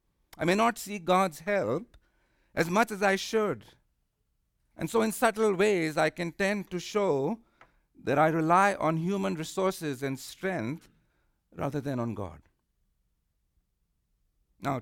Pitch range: 130-195 Hz